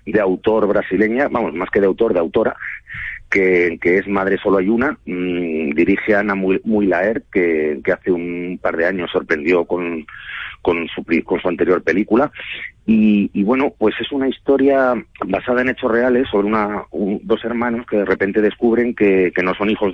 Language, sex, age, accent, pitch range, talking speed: Spanish, male, 40-59, Spanish, 95-115 Hz, 190 wpm